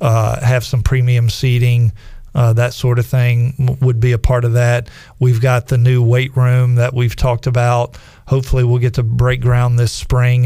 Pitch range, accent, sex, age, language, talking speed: 110-125 Hz, American, male, 40-59, English, 195 wpm